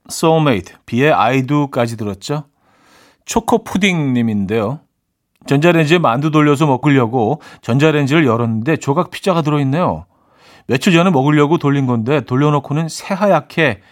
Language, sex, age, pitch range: Korean, male, 40-59, 105-160 Hz